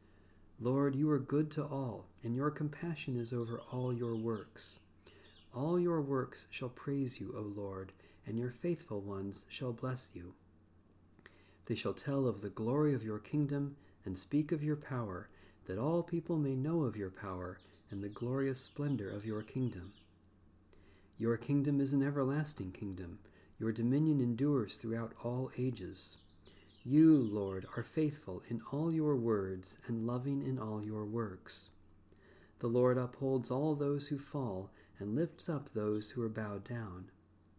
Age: 50-69